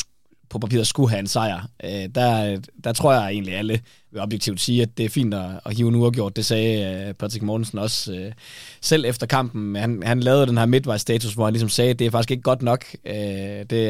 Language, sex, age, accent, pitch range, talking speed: Danish, male, 20-39, native, 105-125 Hz, 215 wpm